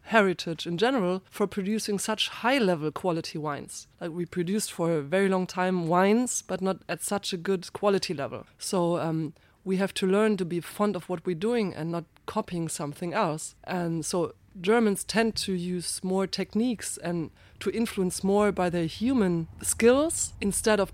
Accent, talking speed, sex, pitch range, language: German, 180 wpm, female, 175-220 Hz, English